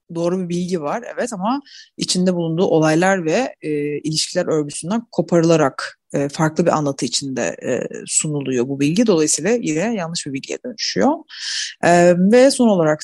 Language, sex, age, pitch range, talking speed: Turkish, female, 30-49, 150-200 Hz, 150 wpm